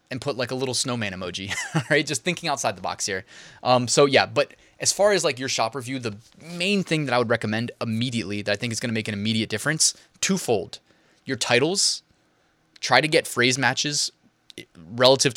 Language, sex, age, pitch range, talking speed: English, male, 20-39, 100-130 Hz, 205 wpm